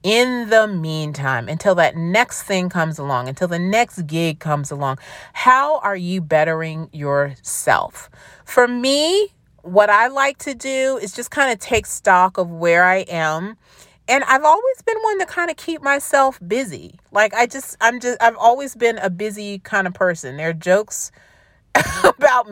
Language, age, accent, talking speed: English, 40-59, American, 175 wpm